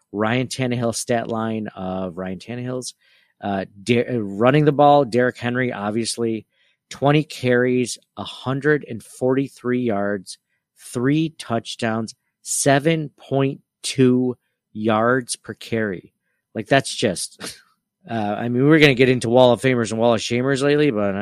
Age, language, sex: 40-59, English, male